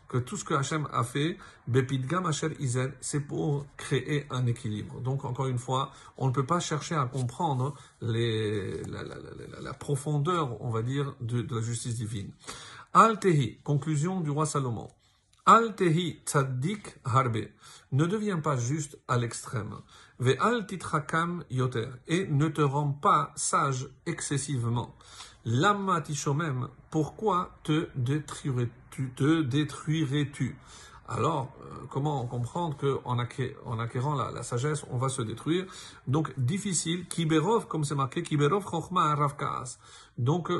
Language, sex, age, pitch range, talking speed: French, male, 50-69, 125-155 Hz, 130 wpm